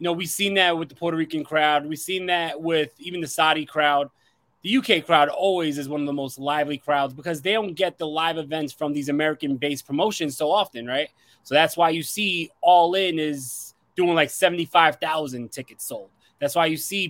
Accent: American